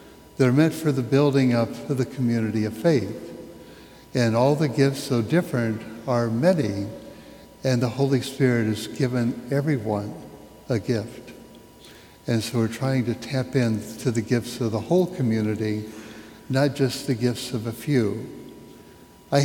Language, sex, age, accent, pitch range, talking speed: English, male, 60-79, American, 115-135 Hz, 150 wpm